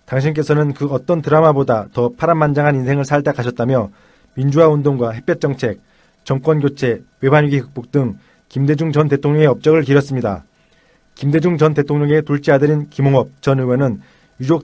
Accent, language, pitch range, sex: native, Korean, 130-150 Hz, male